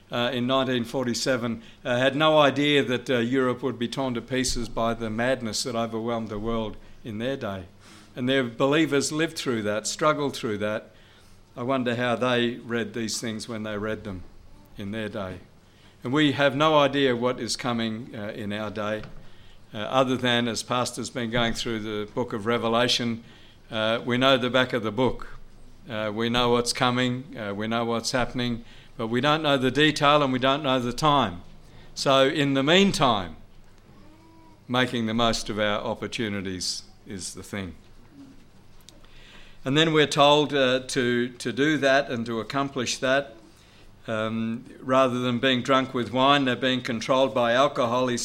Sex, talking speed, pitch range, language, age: male, 175 wpm, 110-135 Hz, English, 60-79